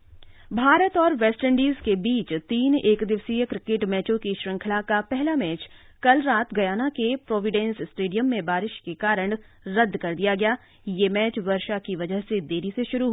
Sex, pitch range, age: female, 190-245 Hz, 30-49